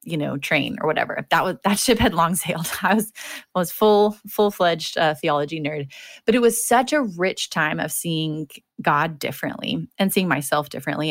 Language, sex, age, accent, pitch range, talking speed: English, female, 30-49, American, 160-205 Hz, 200 wpm